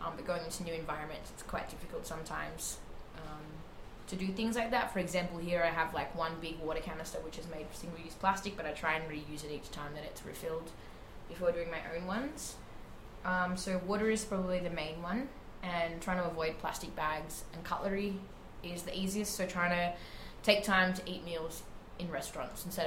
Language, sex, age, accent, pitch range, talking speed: English, female, 20-39, Australian, 160-185 Hz, 205 wpm